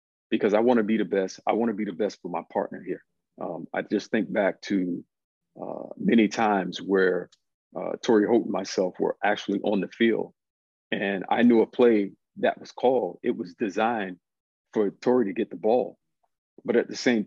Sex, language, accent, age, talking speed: male, English, American, 40-59, 200 wpm